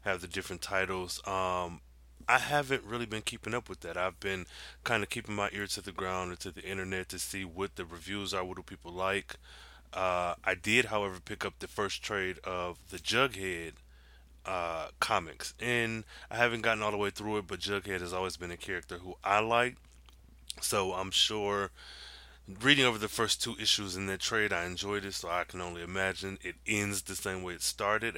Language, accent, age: English, American, 20-39